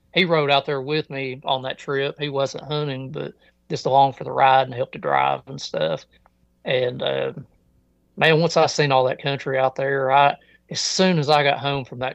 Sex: male